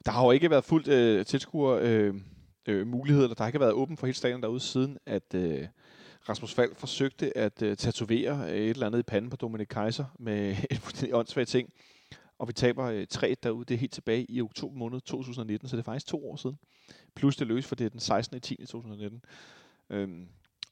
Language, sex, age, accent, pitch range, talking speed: Danish, male, 30-49, native, 105-125 Hz, 205 wpm